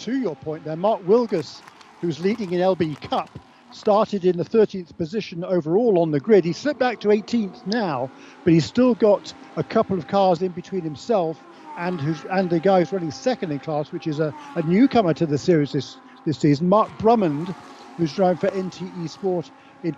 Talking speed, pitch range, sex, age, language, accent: 200 wpm, 165-205 Hz, male, 50-69, English, British